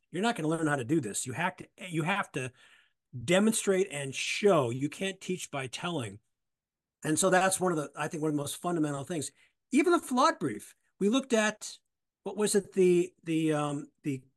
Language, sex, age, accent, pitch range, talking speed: English, male, 50-69, American, 145-205 Hz, 215 wpm